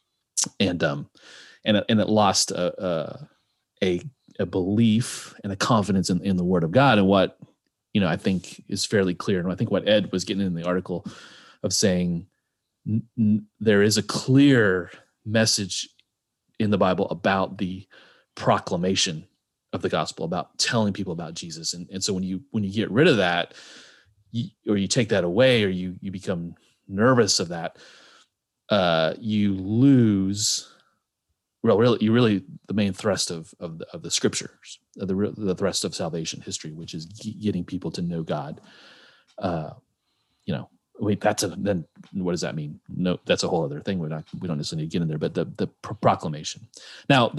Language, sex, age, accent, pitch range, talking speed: English, male, 30-49, American, 90-115 Hz, 185 wpm